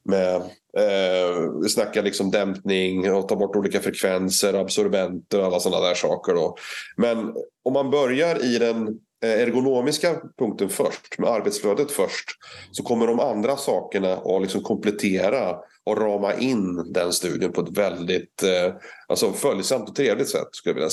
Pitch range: 95-135 Hz